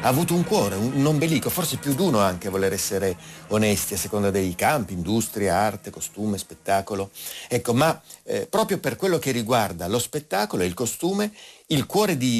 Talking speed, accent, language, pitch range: 190 wpm, native, Italian, 100-135 Hz